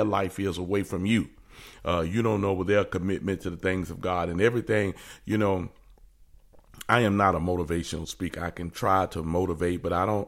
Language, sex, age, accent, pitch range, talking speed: English, male, 40-59, American, 90-105 Hz, 205 wpm